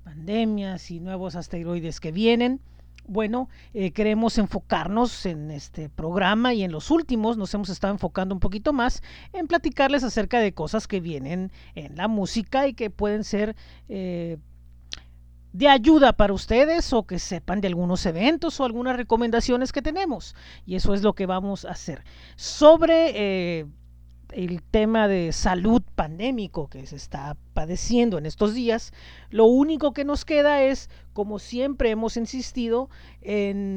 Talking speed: 155 wpm